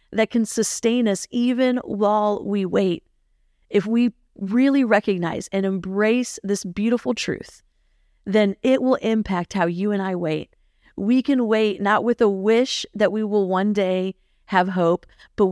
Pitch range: 175-215 Hz